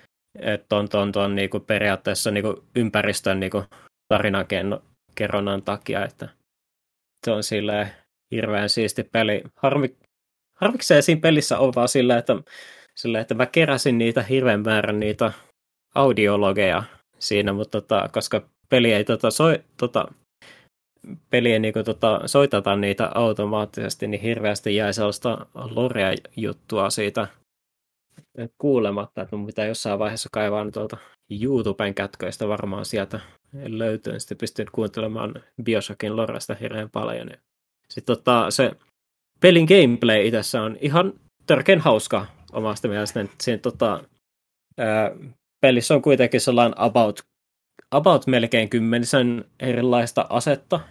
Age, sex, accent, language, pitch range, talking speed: 20-39, male, native, Finnish, 105-125 Hz, 115 wpm